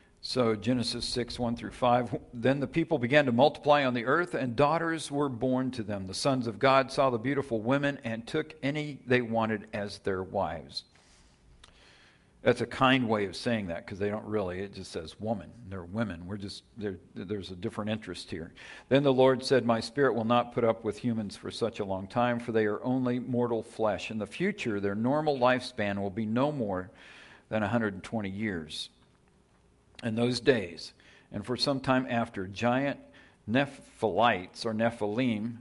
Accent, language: American, English